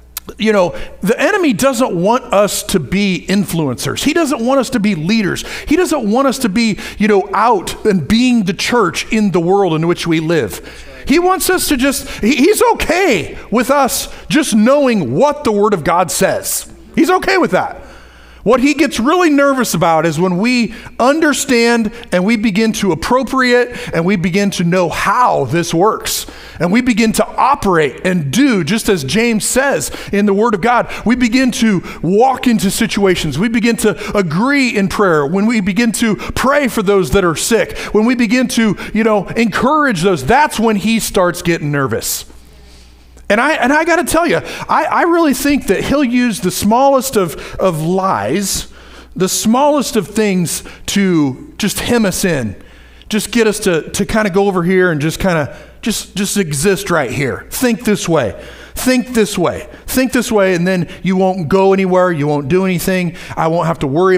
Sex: male